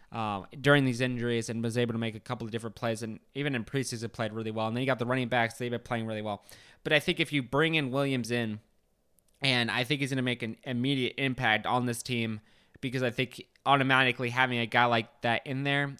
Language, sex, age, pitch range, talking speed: English, male, 20-39, 115-130 Hz, 250 wpm